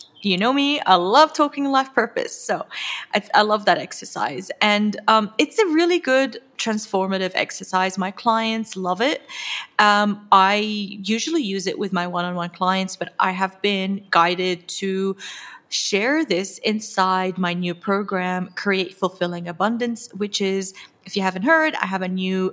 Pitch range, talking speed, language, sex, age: 185-260 Hz, 160 wpm, English, female, 30-49